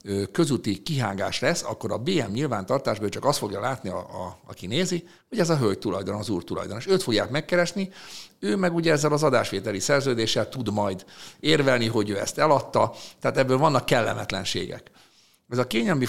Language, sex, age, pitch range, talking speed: Hungarian, male, 60-79, 105-145 Hz, 180 wpm